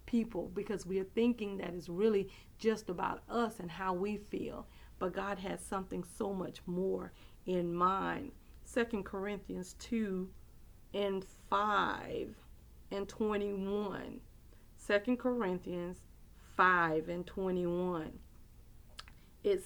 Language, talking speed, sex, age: English, 115 wpm, female, 40-59